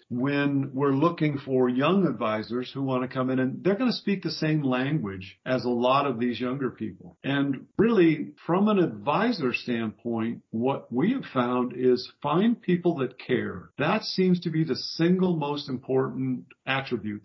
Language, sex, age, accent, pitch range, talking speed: English, male, 50-69, American, 120-170 Hz, 175 wpm